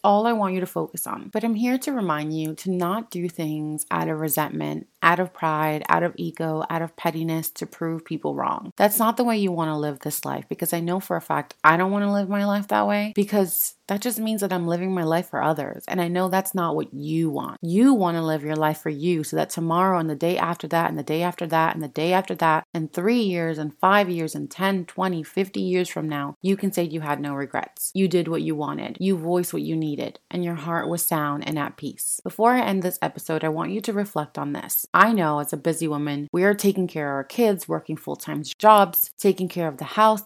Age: 30-49